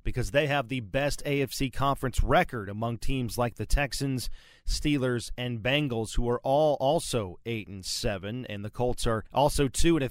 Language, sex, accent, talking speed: English, male, American, 185 wpm